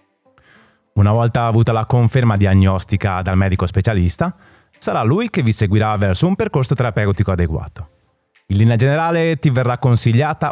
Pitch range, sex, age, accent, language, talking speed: 95-135 Hz, male, 30-49, native, Italian, 145 wpm